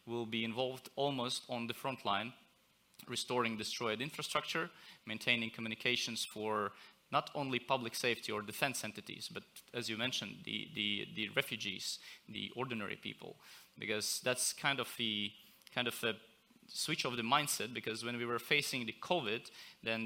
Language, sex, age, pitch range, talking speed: English, male, 30-49, 110-125 Hz, 155 wpm